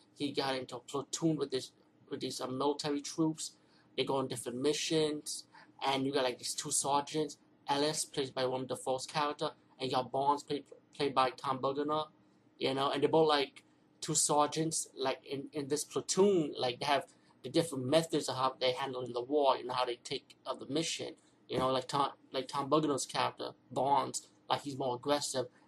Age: 30-49